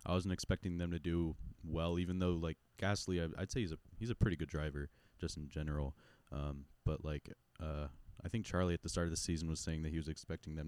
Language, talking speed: English, 240 wpm